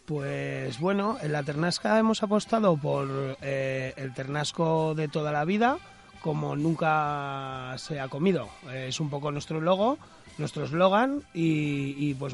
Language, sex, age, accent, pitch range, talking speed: Spanish, male, 30-49, Spanish, 145-170 Hz, 150 wpm